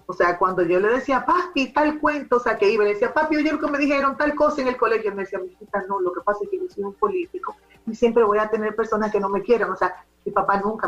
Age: 30-49